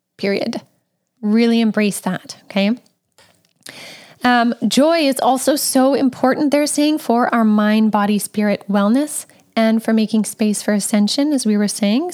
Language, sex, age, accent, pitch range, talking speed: English, female, 10-29, American, 210-255 Hz, 145 wpm